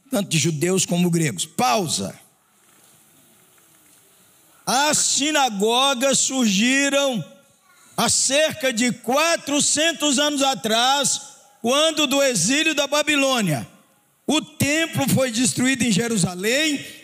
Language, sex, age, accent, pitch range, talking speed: Portuguese, male, 50-69, Brazilian, 210-285 Hz, 90 wpm